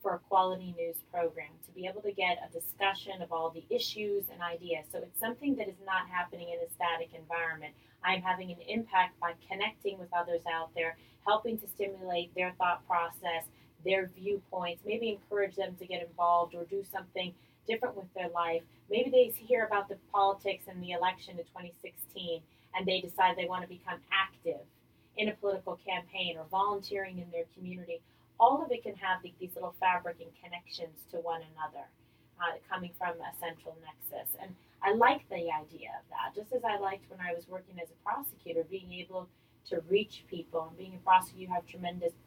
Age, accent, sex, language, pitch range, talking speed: 30-49, American, female, English, 170-195 Hz, 195 wpm